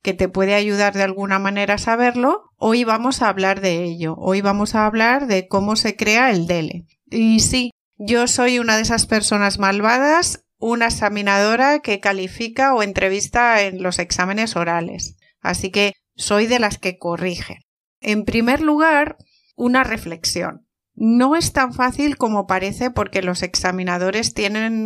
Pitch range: 195-245 Hz